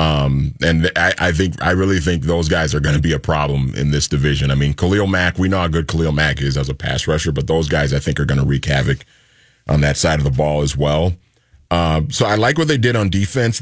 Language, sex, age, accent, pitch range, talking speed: English, male, 30-49, American, 80-110 Hz, 265 wpm